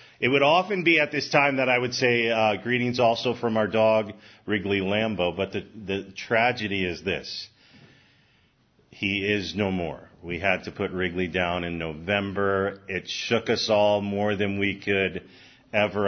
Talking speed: 170 wpm